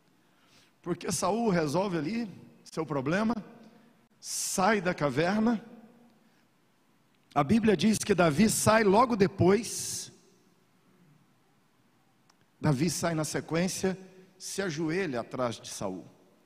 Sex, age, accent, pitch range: male, 50-69, Brazilian, 135-185 Hz